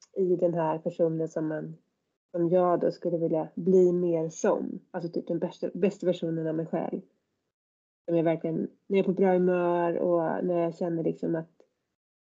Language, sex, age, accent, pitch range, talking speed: Swedish, female, 30-49, native, 170-205 Hz, 175 wpm